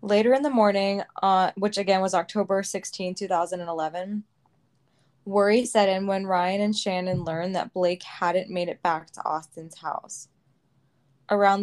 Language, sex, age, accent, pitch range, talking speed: English, female, 20-39, American, 165-195 Hz, 150 wpm